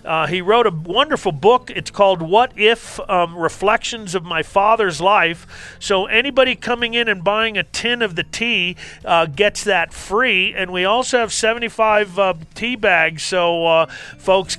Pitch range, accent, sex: 165-215 Hz, American, male